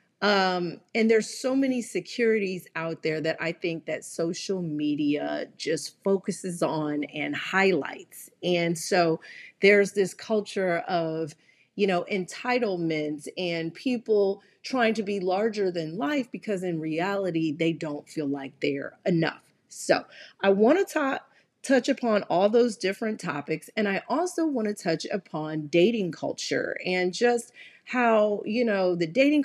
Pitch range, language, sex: 165-220 Hz, English, female